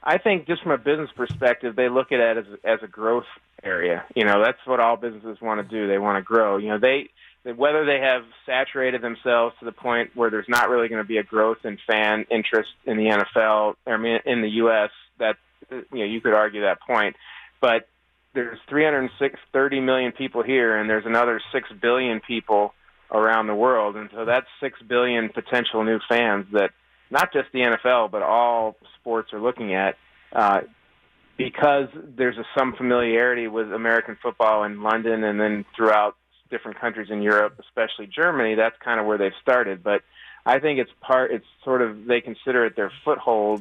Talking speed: 195 wpm